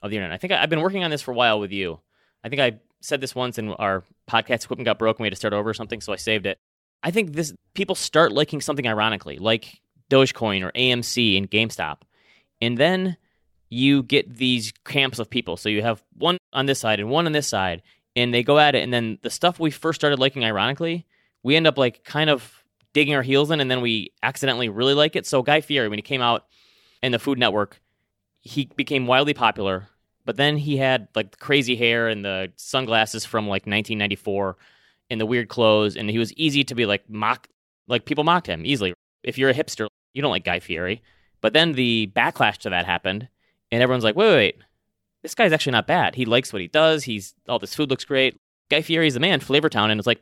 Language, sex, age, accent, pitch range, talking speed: English, male, 20-39, American, 110-145 Hz, 235 wpm